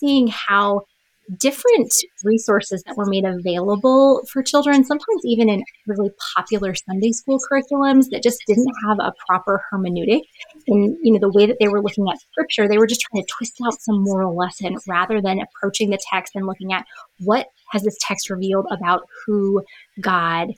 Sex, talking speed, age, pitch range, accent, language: female, 180 wpm, 20-39, 195-235 Hz, American, English